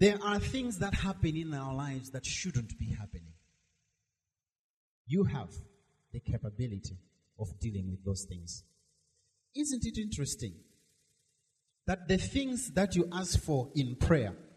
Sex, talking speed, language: male, 135 wpm, English